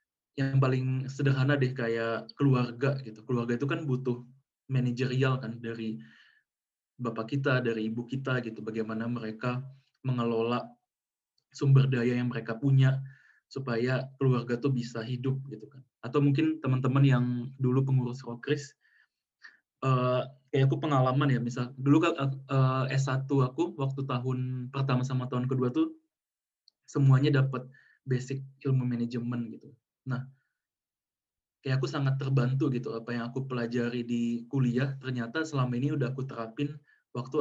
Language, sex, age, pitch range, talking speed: Indonesian, male, 20-39, 120-135 Hz, 130 wpm